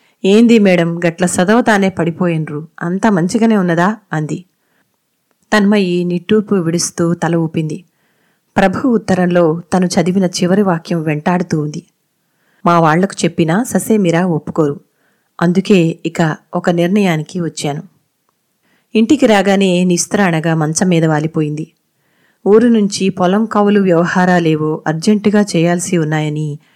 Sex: female